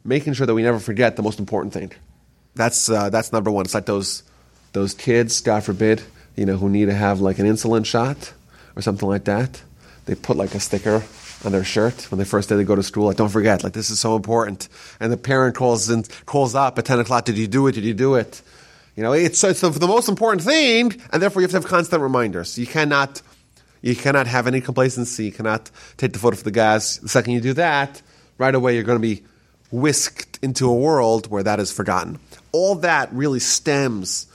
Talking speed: 230 wpm